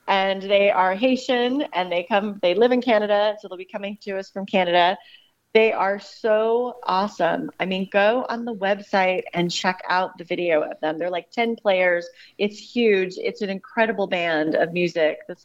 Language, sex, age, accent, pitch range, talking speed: English, female, 30-49, American, 175-220 Hz, 190 wpm